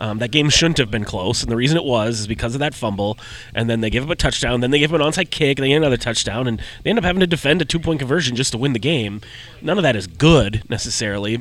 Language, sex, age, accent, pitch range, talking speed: English, male, 30-49, American, 115-145 Hz, 300 wpm